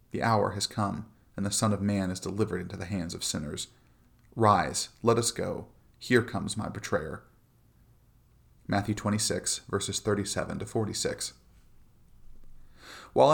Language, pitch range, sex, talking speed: English, 100-115 Hz, male, 130 wpm